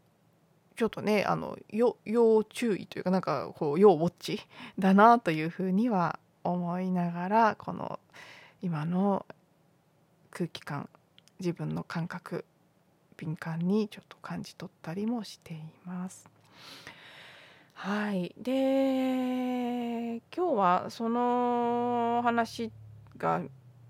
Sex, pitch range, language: female, 170-220 Hz, Japanese